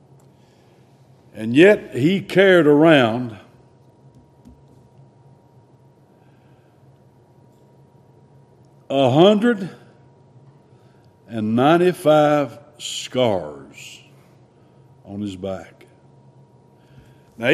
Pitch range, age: 125-160 Hz, 60-79